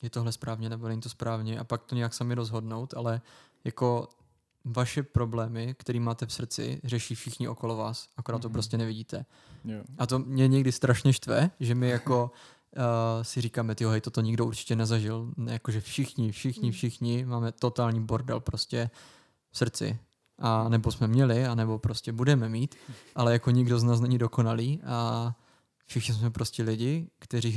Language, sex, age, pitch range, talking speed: English, male, 20-39, 115-125 Hz, 175 wpm